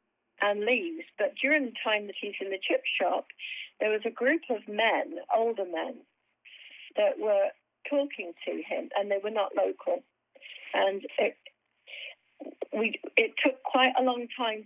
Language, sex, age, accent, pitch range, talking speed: English, female, 40-59, British, 195-290 Hz, 160 wpm